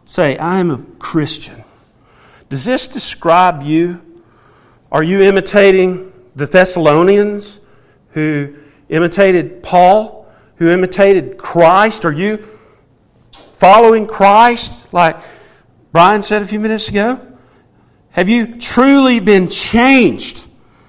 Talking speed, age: 100 wpm, 50-69